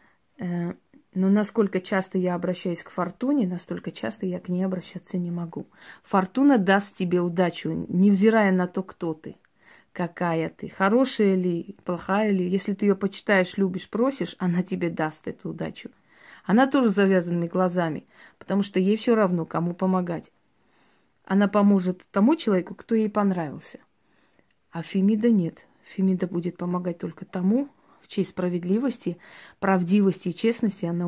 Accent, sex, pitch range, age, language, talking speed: native, female, 175-205 Hz, 30-49, Russian, 145 wpm